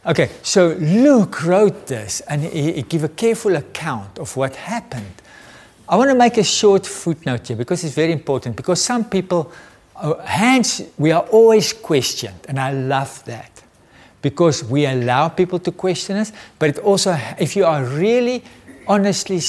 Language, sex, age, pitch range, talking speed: English, male, 60-79, 125-175 Hz, 165 wpm